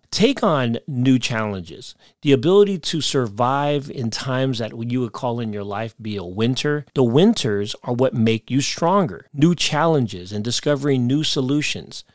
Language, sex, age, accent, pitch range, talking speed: English, male, 40-59, American, 110-150 Hz, 165 wpm